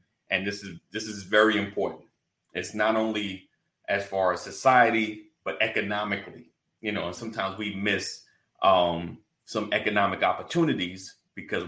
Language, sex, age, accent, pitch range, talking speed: English, male, 30-49, American, 100-165 Hz, 140 wpm